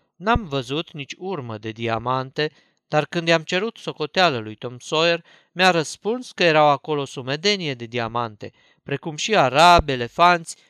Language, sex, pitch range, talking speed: Romanian, male, 130-180 Hz, 145 wpm